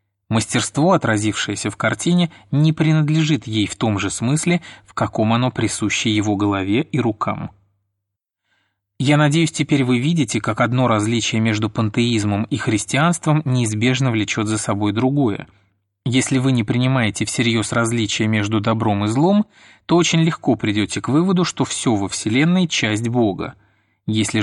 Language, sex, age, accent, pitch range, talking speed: Russian, male, 30-49, native, 105-135 Hz, 145 wpm